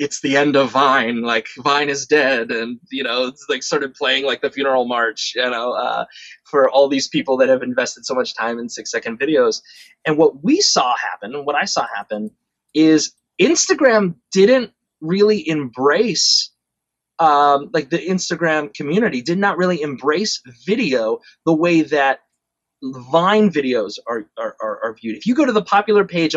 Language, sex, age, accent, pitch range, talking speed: English, male, 20-39, American, 135-200 Hz, 180 wpm